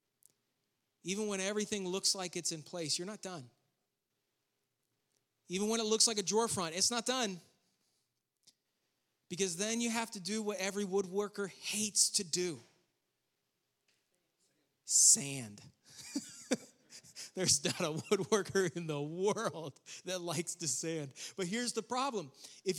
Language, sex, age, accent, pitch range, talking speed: English, male, 30-49, American, 180-245 Hz, 135 wpm